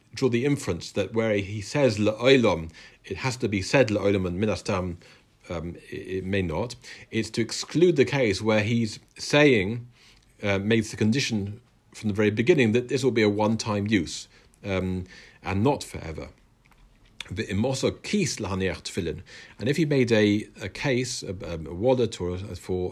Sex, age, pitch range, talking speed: male, 50-69, 95-125 Hz, 160 wpm